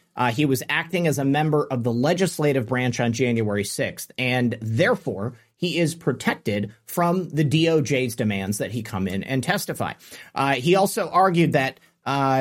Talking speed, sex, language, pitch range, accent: 165 wpm, male, English, 120-165 Hz, American